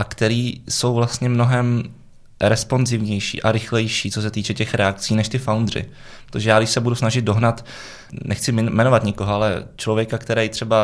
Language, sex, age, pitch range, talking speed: Czech, male, 20-39, 105-115 Hz, 165 wpm